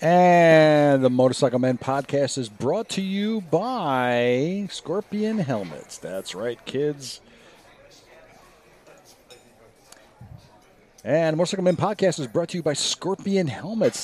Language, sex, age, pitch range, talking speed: English, male, 50-69, 125-180 Hz, 110 wpm